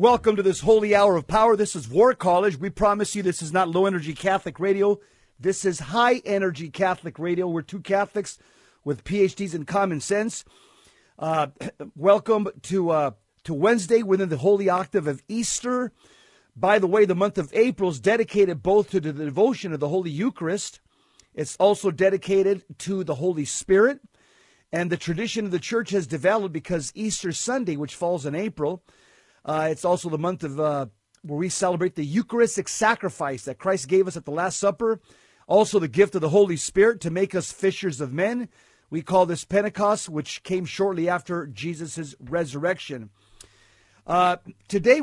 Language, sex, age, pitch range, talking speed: English, male, 50-69, 160-205 Hz, 175 wpm